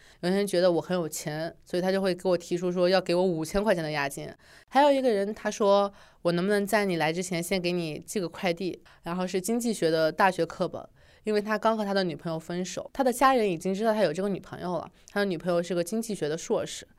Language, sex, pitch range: Chinese, female, 160-200 Hz